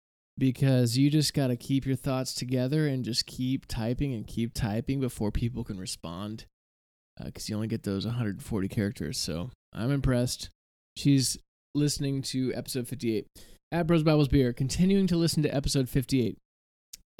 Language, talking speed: English, 160 wpm